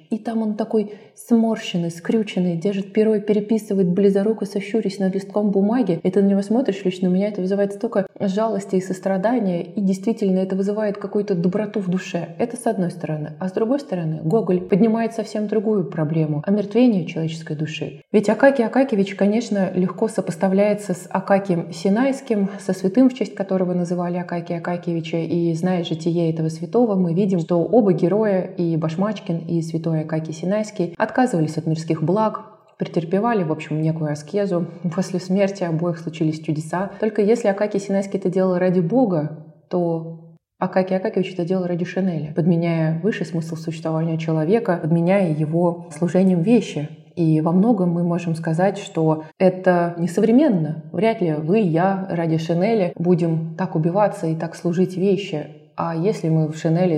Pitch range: 165-200 Hz